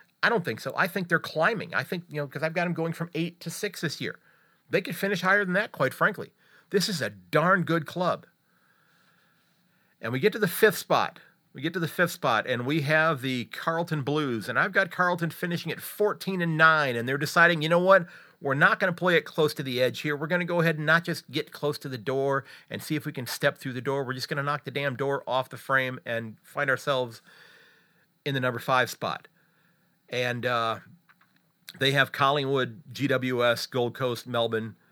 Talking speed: 225 wpm